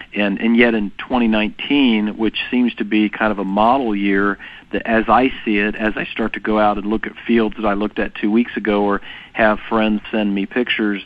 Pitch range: 105-115 Hz